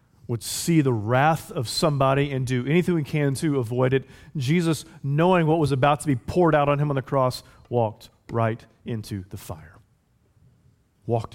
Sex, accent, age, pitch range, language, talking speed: male, American, 30-49, 100-125 Hz, English, 180 wpm